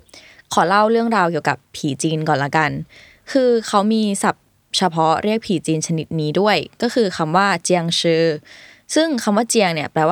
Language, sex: Thai, female